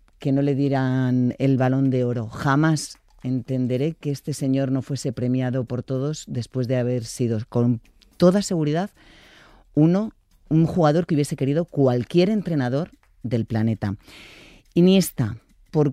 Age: 40-59